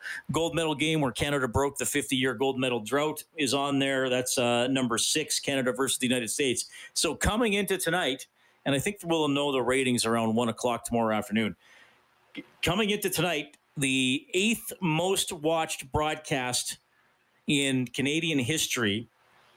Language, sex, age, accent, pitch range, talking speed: English, male, 40-59, American, 120-150 Hz, 155 wpm